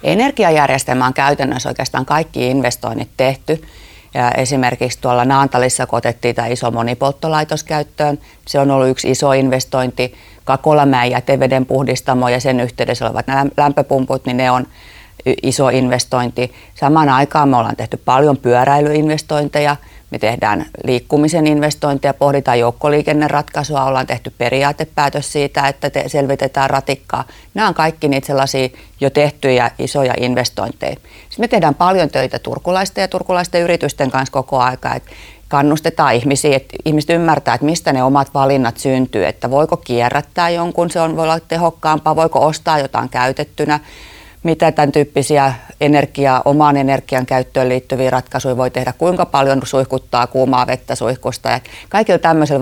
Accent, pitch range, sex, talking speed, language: native, 125-150 Hz, female, 140 wpm, Finnish